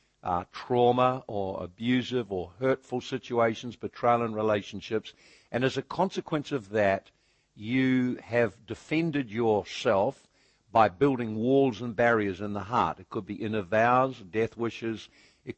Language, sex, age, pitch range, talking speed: English, male, 60-79, 110-130 Hz, 140 wpm